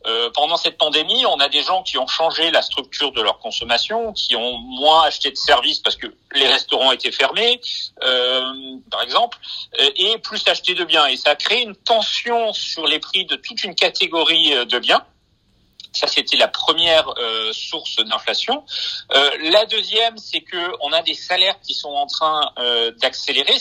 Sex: male